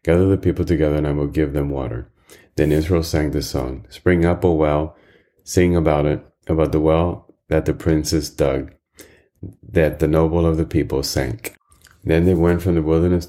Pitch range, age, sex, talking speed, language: 75-85 Hz, 30-49, male, 195 wpm, English